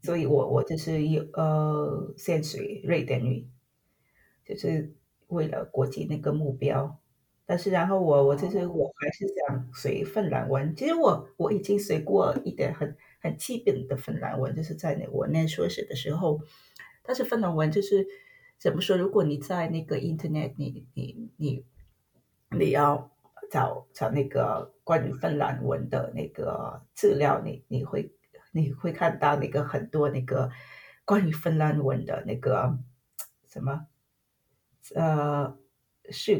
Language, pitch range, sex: Chinese, 140-190 Hz, female